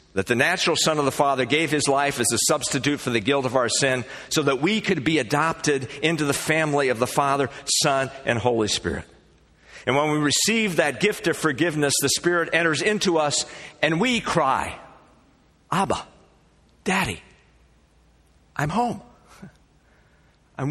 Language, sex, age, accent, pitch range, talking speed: English, male, 50-69, American, 95-145 Hz, 160 wpm